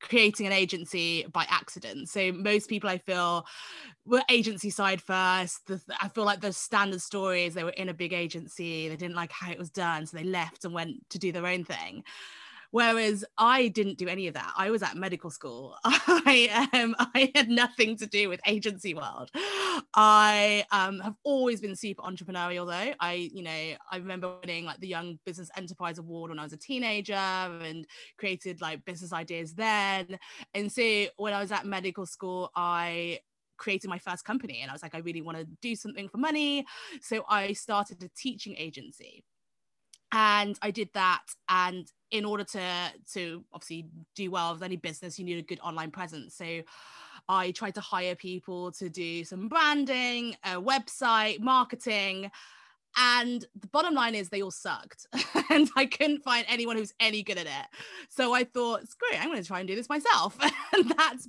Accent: British